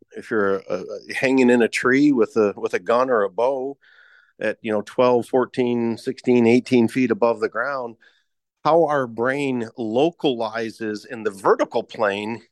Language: English